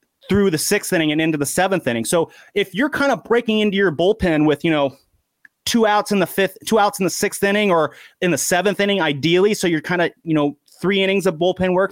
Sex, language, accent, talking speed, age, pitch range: male, English, American, 245 wpm, 30-49, 160-205 Hz